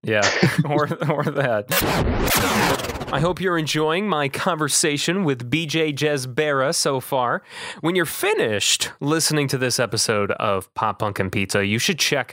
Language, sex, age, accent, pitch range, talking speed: English, male, 30-49, American, 110-160 Hz, 145 wpm